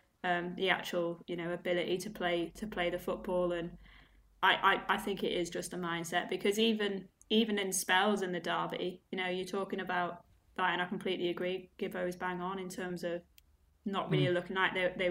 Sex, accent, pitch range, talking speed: female, British, 185-205 Hz, 210 wpm